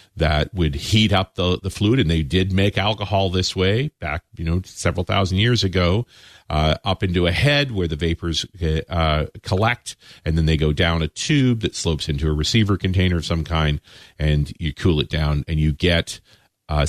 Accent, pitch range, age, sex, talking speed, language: American, 80-110 Hz, 40-59, male, 200 wpm, English